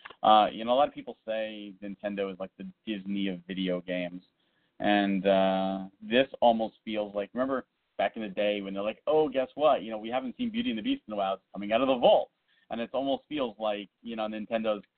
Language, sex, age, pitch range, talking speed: English, male, 30-49, 100-125 Hz, 235 wpm